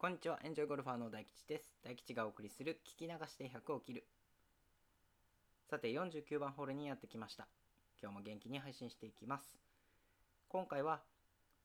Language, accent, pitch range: Japanese, native, 95-150 Hz